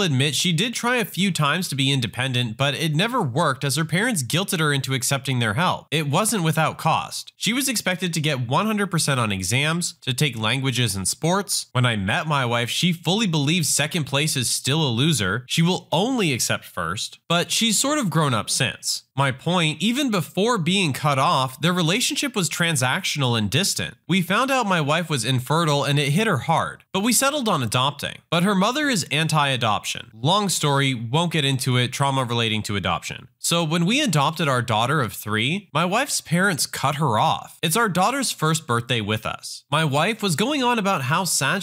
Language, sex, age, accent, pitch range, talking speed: English, male, 30-49, American, 130-180 Hz, 200 wpm